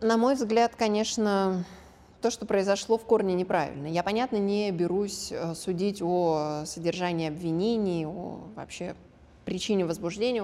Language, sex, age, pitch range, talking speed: Russian, female, 20-39, 175-200 Hz, 125 wpm